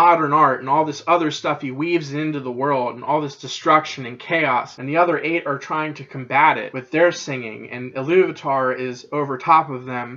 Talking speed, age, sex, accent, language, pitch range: 220 wpm, 20-39, male, American, English, 130-155 Hz